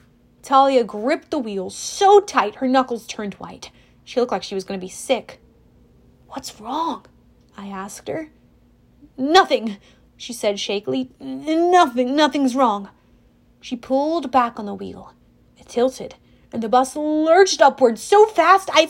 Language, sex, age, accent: English, female, 30-49, American